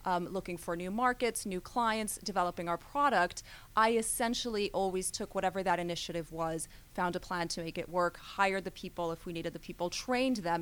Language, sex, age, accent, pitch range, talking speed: English, female, 30-49, American, 170-210 Hz, 200 wpm